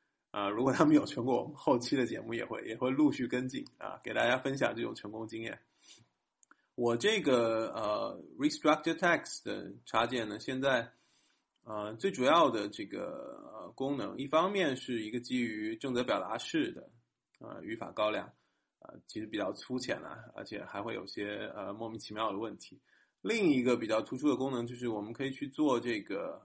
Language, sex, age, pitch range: English, male, 20-39, 110-135 Hz